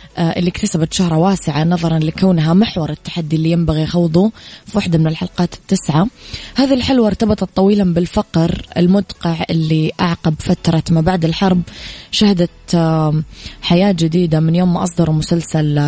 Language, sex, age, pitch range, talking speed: Arabic, female, 20-39, 160-180 Hz, 135 wpm